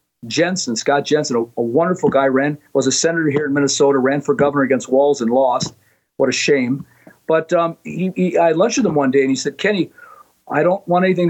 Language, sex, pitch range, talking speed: English, male, 140-180 Hz, 225 wpm